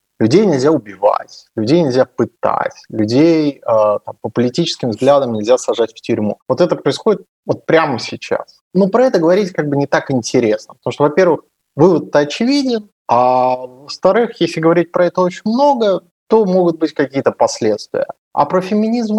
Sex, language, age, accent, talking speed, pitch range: male, Russian, 30-49, native, 165 wpm, 140-195 Hz